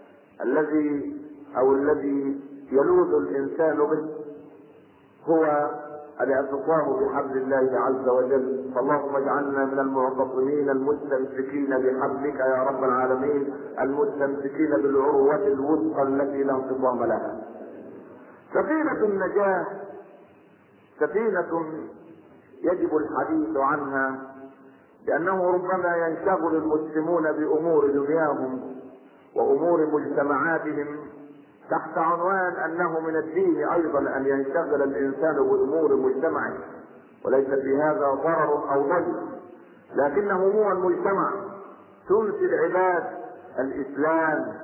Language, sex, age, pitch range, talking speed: Arabic, male, 50-69, 140-165 Hz, 85 wpm